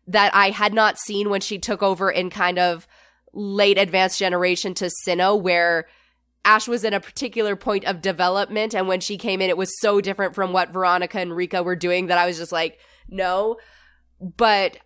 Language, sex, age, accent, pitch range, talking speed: English, female, 20-39, American, 180-215 Hz, 200 wpm